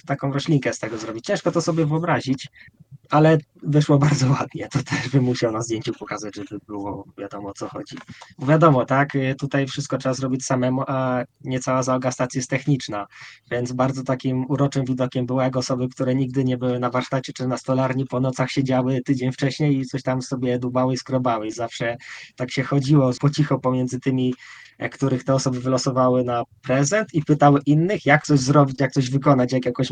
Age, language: 20-39, Polish